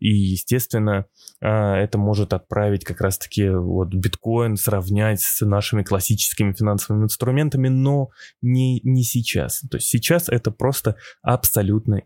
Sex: male